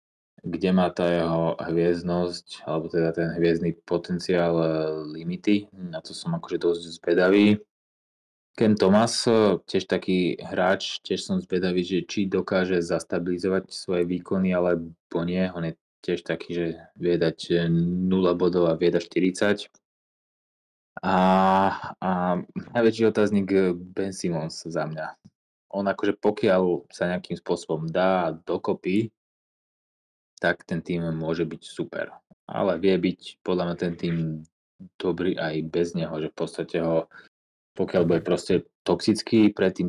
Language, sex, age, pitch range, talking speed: Slovak, male, 20-39, 85-95 Hz, 130 wpm